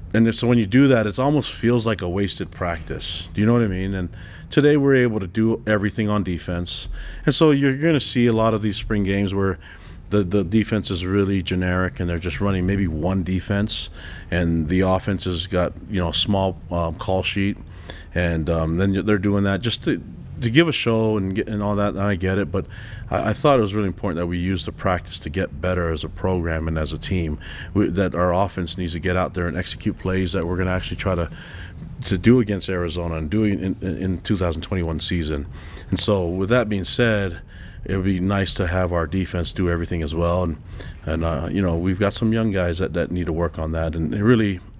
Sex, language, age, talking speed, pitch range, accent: male, English, 30-49, 235 wpm, 85-105 Hz, American